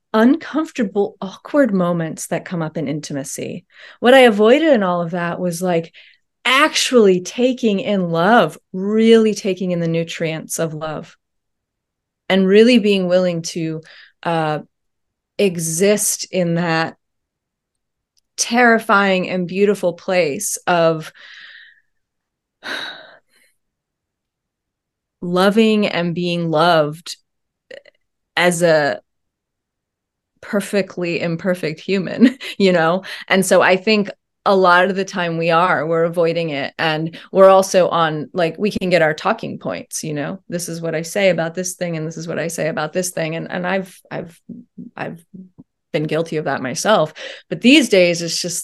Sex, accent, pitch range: female, American, 165-200 Hz